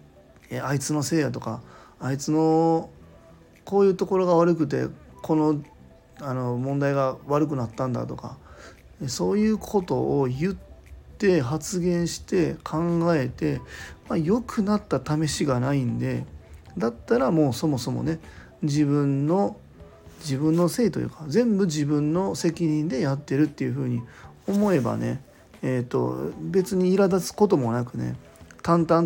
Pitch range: 120-165 Hz